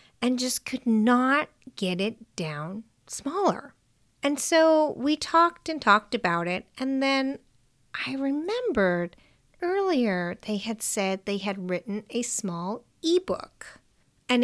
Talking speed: 130 wpm